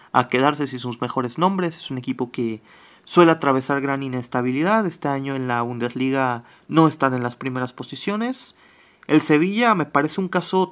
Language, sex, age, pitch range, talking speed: Spanish, male, 30-49, 130-170 Hz, 175 wpm